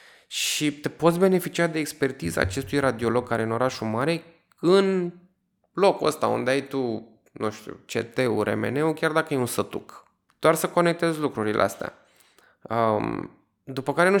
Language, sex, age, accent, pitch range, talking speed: Romanian, male, 20-39, native, 110-135 Hz, 155 wpm